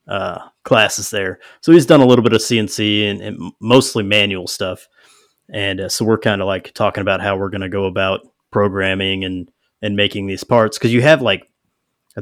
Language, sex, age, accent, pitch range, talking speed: English, male, 30-49, American, 100-120 Hz, 205 wpm